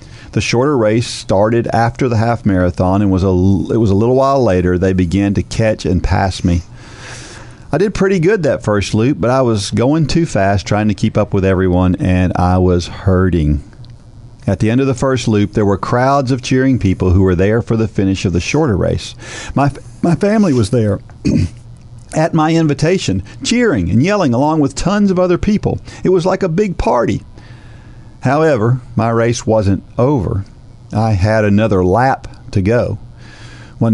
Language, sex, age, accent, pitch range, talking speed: English, male, 50-69, American, 100-130 Hz, 185 wpm